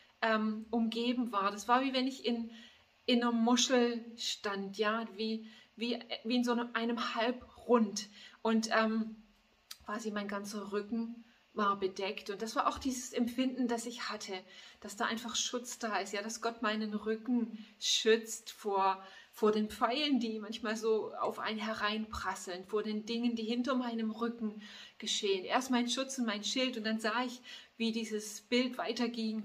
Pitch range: 210-245 Hz